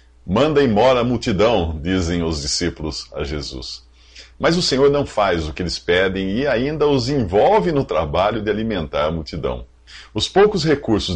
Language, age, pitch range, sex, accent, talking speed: English, 50-69, 80-130 Hz, male, Brazilian, 170 wpm